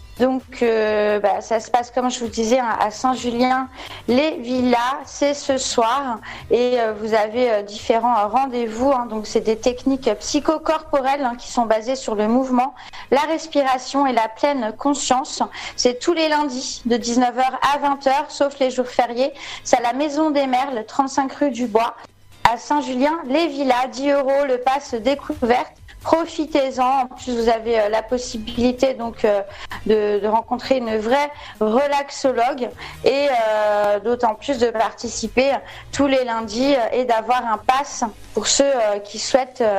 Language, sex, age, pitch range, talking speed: French, female, 40-59, 225-275 Hz, 160 wpm